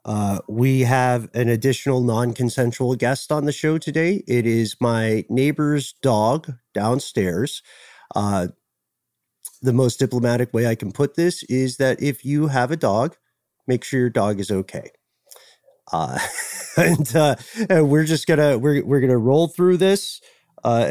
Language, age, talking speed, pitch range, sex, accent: English, 40-59, 150 wpm, 115-145 Hz, male, American